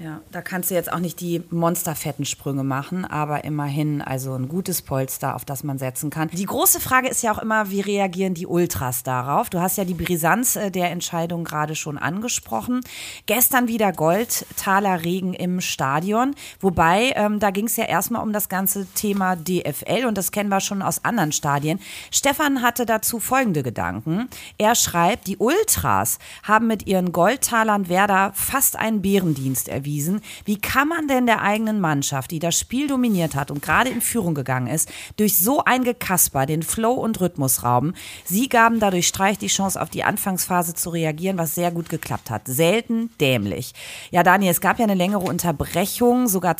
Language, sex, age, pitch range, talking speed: German, female, 30-49, 155-210 Hz, 180 wpm